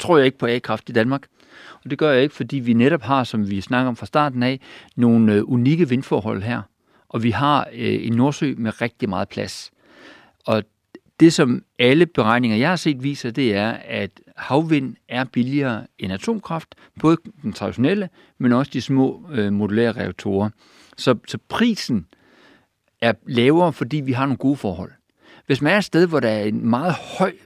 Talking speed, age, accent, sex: 180 wpm, 60-79, native, male